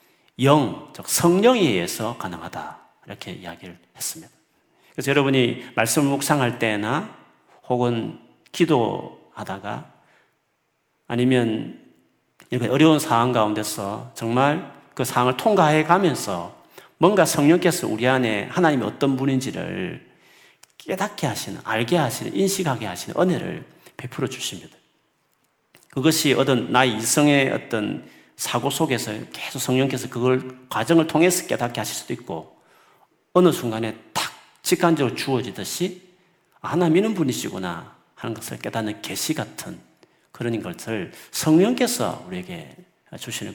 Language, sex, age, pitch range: Korean, male, 40-59, 120-175 Hz